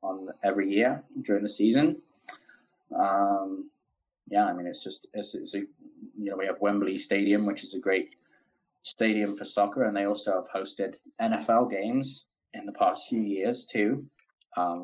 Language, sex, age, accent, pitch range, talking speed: English, male, 20-39, British, 90-105 Hz, 160 wpm